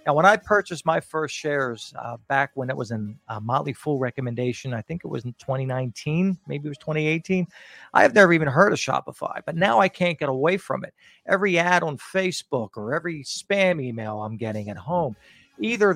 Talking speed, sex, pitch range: 205 wpm, male, 125-165 Hz